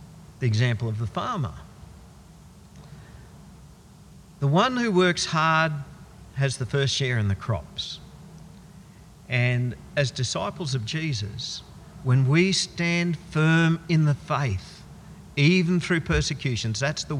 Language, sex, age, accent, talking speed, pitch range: English, male, 50-69, Australian, 120 wpm, 120-165 Hz